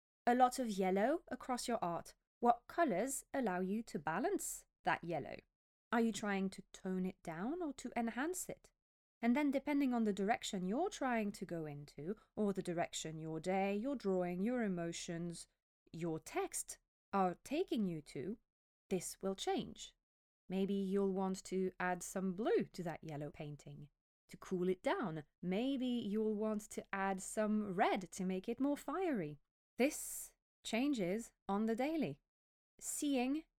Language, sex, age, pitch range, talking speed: English, female, 20-39, 175-235 Hz, 155 wpm